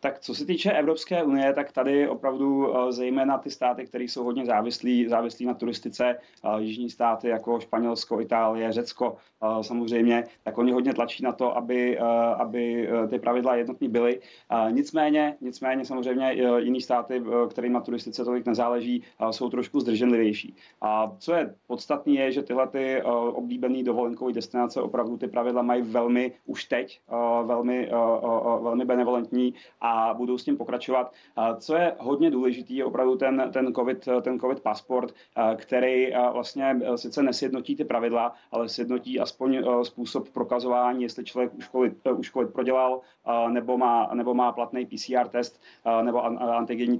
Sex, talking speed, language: male, 150 wpm, Czech